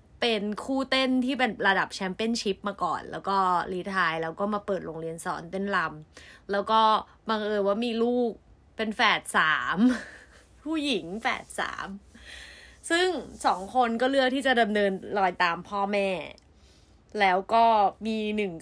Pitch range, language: 185-235 Hz, Thai